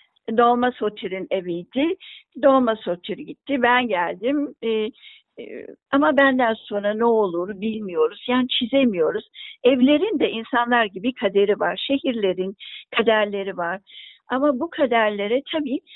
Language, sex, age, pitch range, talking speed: Turkish, female, 60-79, 205-280 Hz, 115 wpm